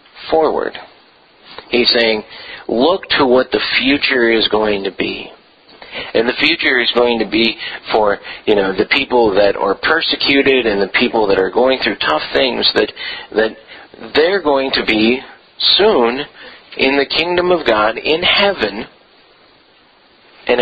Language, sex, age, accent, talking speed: English, male, 50-69, American, 150 wpm